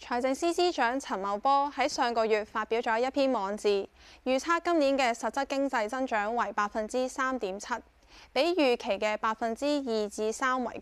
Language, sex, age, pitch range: Chinese, female, 10-29, 215-275 Hz